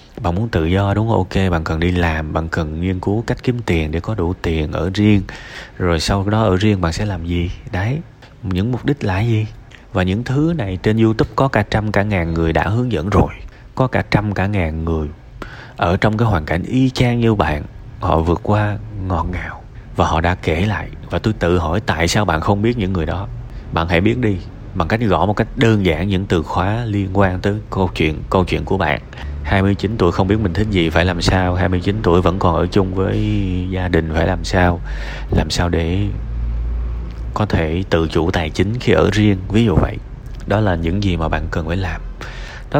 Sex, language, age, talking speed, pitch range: male, Vietnamese, 20-39, 225 wpm, 85-110 Hz